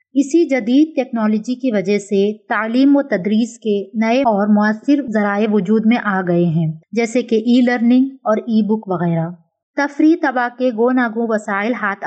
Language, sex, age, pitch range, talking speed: Urdu, female, 20-39, 205-245 Hz, 170 wpm